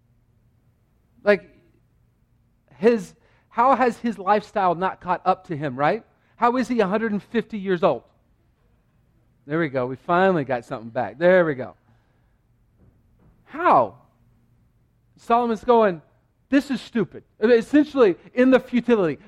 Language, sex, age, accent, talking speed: English, male, 40-59, American, 120 wpm